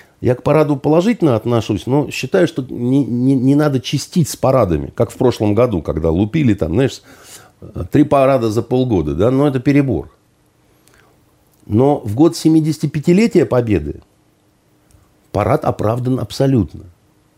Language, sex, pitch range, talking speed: Russian, male, 115-160 Hz, 135 wpm